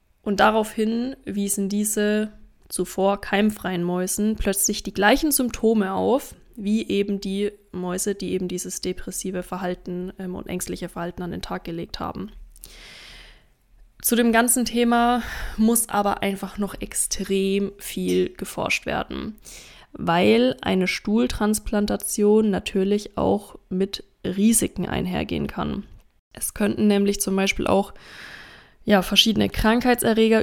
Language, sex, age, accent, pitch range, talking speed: German, female, 20-39, German, 190-215 Hz, 120 wpm